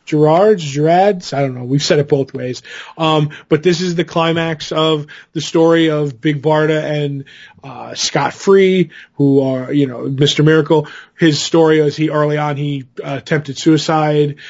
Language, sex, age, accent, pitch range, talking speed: English, male, 20-39, American, 145-175 Hz, 175 wpm